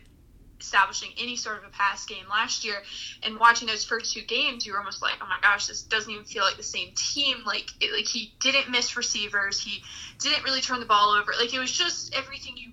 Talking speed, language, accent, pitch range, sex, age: 230 wpm, English, American, 210-260 Hz, female, 20-39